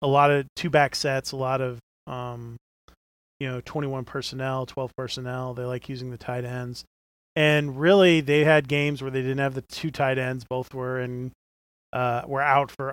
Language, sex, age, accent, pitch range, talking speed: English, male, 30-49, American, 125-140 Hz, 195 wpm